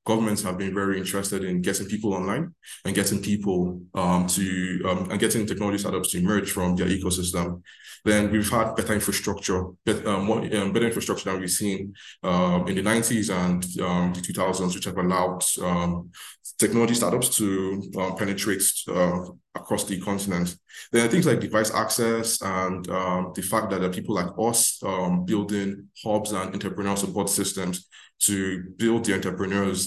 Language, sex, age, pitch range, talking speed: English, male, 20-39, 90-100 Hz, 175 wpm